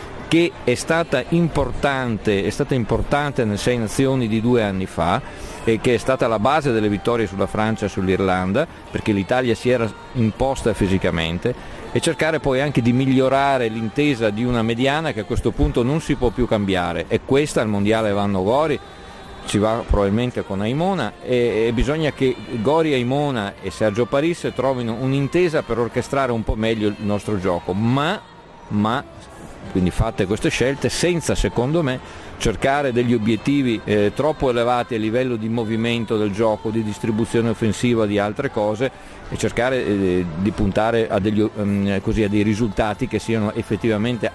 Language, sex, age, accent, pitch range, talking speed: Italian, male, 50-69, native, 105-130 Hz, 160 wpm